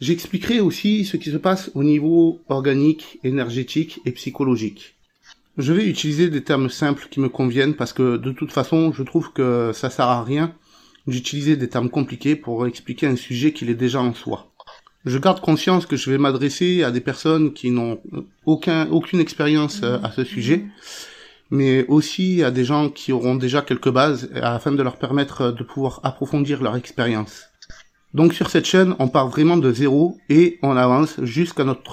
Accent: French